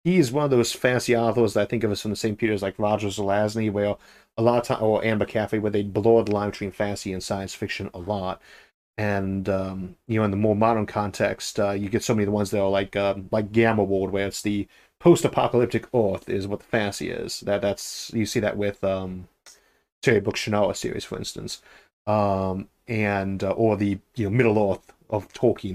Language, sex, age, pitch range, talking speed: English, male, 30-49, 100-115 Hz, 225 wpm